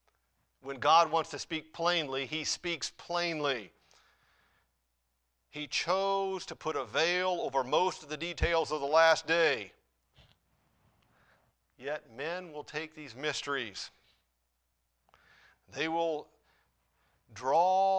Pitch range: 120-175 Hz